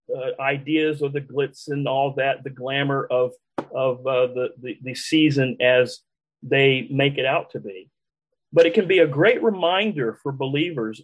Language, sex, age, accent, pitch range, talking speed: English, male, 40-59, American, 135-175 Hz, 180 wpm